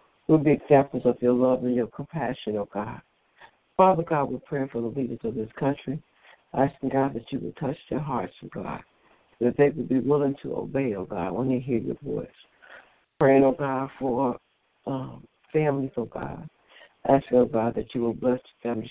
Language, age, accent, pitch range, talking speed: English, 60-79, American, 120-140 Hz, 220 wpm